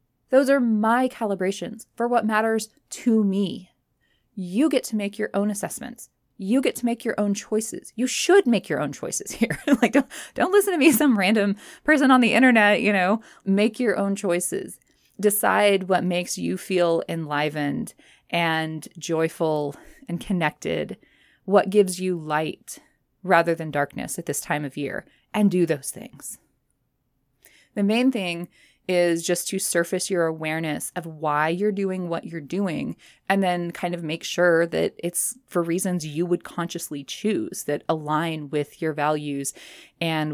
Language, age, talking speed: English, 20-39, 165 wpm